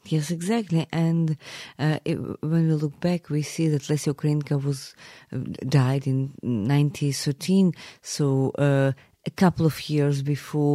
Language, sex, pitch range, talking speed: English, female, 135-155 Hz, 150 wpm